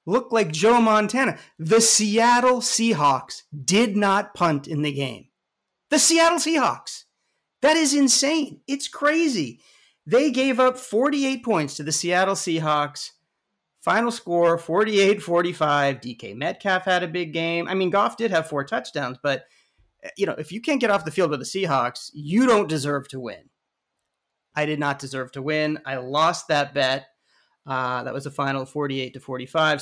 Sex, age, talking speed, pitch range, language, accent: male, 30-49, 160 wpm, 145-225 Hz, English, American